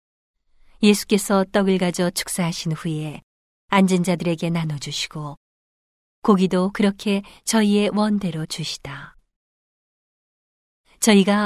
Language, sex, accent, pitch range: Korean, female, native, 170-210 Hz